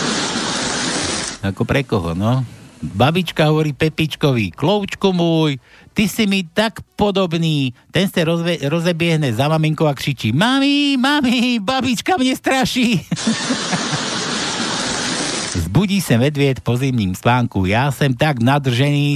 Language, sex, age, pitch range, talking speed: Slovak, male, 60-79, 130-185 Hz, 115 wpm